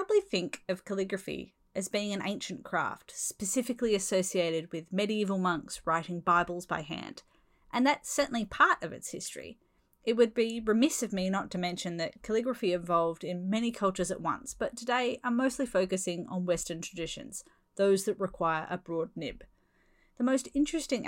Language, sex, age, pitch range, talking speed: English, female, 30-49, 180-235 Hz, 170 wpm